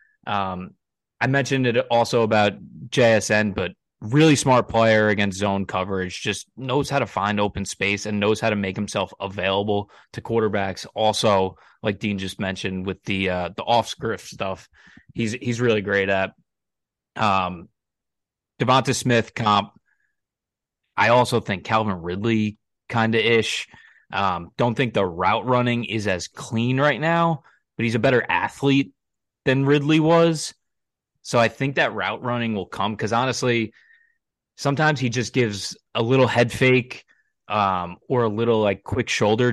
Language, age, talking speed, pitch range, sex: English, 20-39, 155 wpm, 100-125 Hz, male